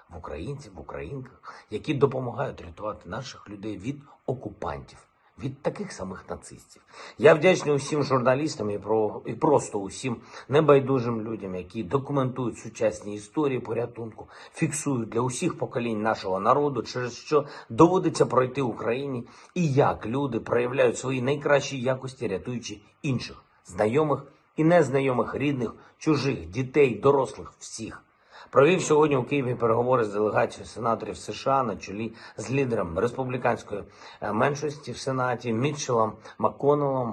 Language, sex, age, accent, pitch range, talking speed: Ukrainian, male, 50-69, native, 110-140 Hz, 125 wpm